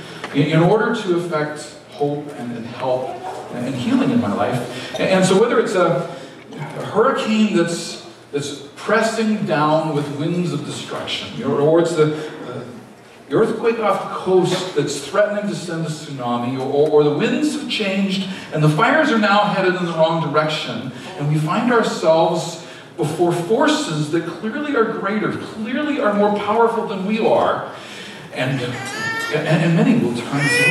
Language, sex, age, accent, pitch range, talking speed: English, male, 40-59, American, 150-225 Hz, 170 wpm